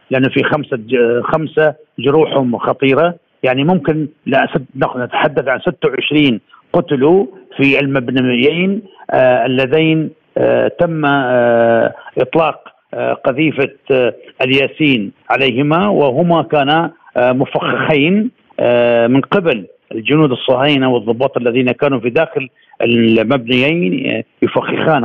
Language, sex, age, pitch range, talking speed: Arabic, male, 50-69, 125-160 Hz, 85 wpm